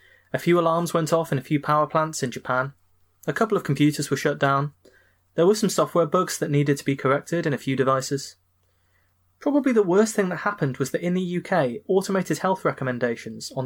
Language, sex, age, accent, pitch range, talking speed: English, male, 20-39, British, 125-170 Hz, 210 wpm